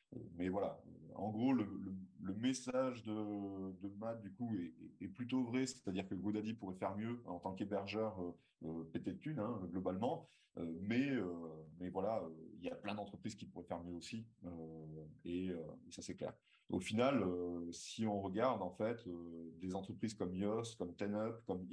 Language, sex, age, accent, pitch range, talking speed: French, male, 30-49, French, 90-110 Hz, 200 wpm